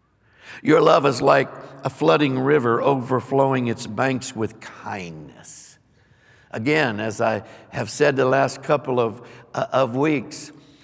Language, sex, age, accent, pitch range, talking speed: English, male, 60-79, American, 125-150 Hz, 135 wpm